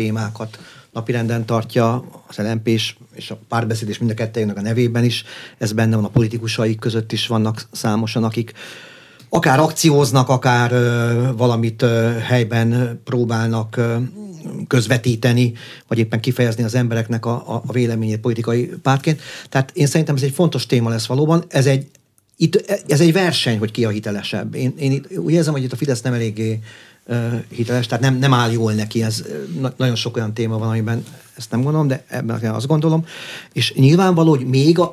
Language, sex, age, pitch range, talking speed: Hungarian, male, 40-59, 115-135 Hz, 170 wpm